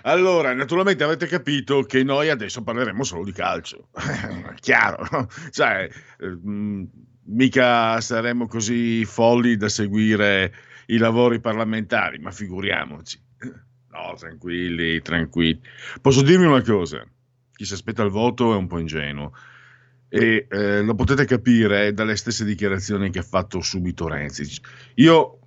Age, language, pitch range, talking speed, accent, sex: 50-69, Italian, 100-130 Hz, 125 wpm, native, male